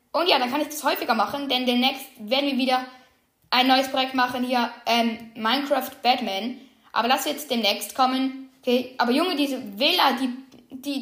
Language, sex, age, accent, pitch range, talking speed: German, female, 10-29, German, 235-285 Hz, 180 wpm